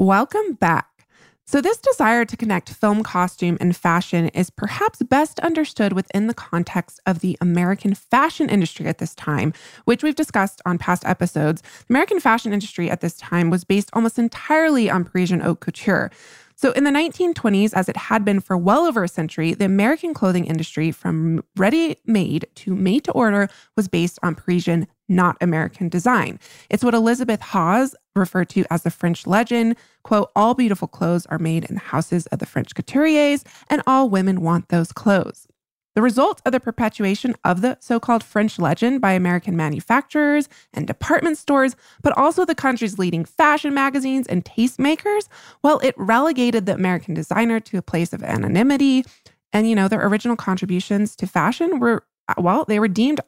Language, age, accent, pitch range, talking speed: English, 20-39, American, 175-255 Hz, 170 wpm